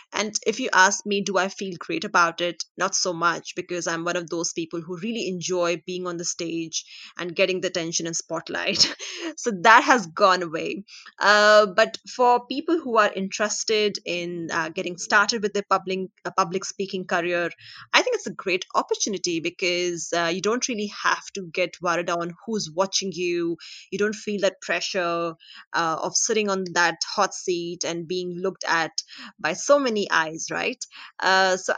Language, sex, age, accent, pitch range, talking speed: Hindi, female, 20-39, native, 175-205 Hz, 185 wpm